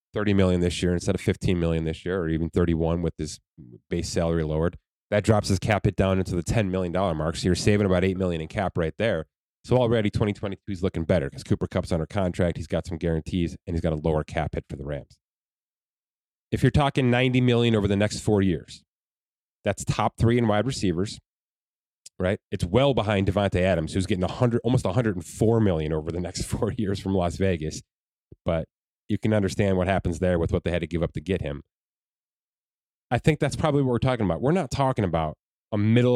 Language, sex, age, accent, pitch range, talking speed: English, male, 30-49, American, 85-115 Hz, 215 wpm